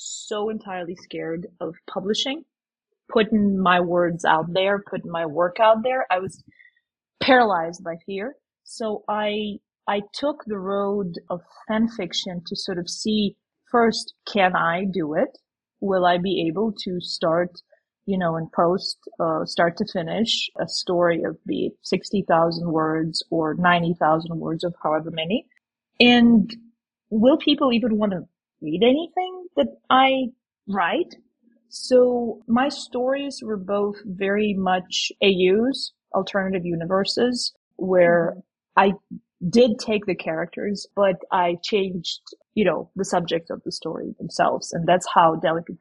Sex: female